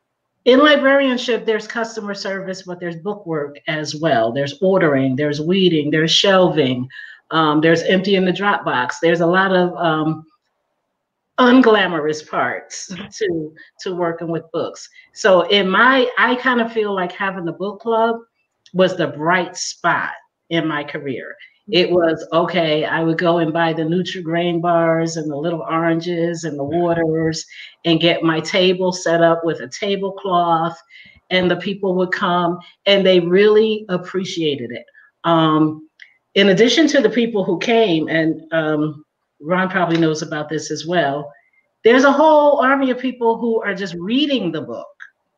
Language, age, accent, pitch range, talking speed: English, 50-69, American, 160-205 Hz, 160 wpm